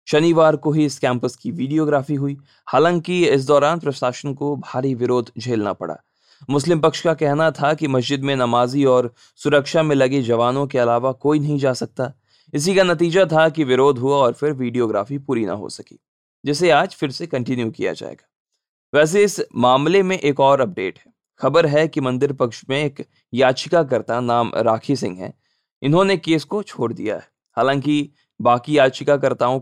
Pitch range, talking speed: 125-155 Hz, 110 wpm